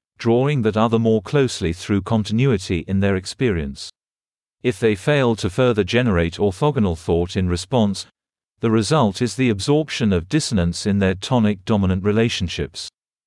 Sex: male